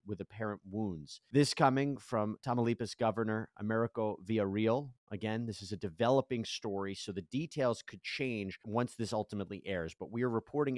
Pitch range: 100-120 Hz